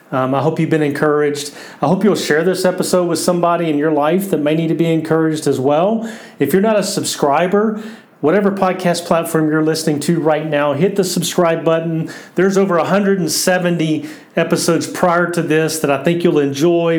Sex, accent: male, American